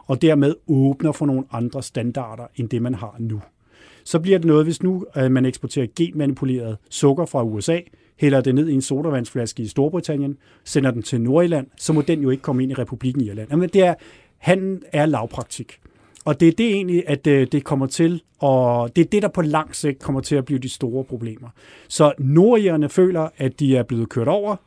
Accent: native